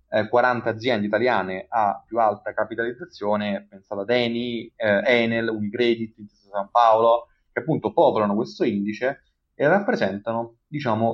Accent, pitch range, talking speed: native, 100-120 Hz, 125 wpm